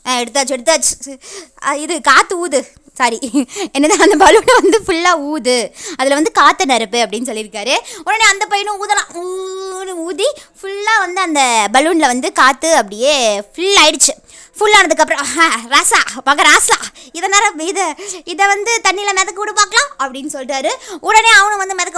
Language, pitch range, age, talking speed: Tamil, 265-365 Hz, 20-39, 140 wpm